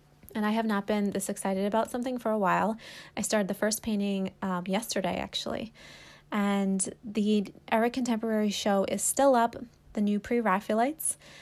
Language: English